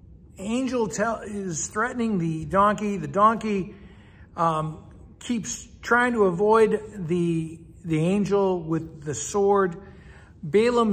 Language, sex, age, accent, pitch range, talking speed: English, male, 60-79, American, 150-205 Hz, 110 wpm